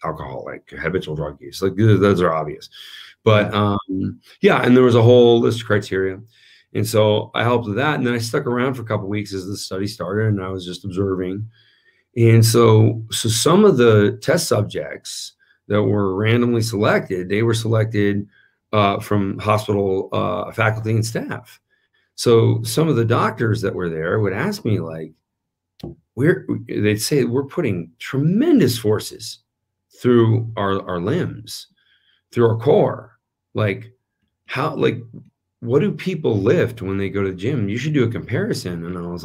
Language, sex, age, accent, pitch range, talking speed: English, male, 40-59, American, 95-120 Hz, 175 wpm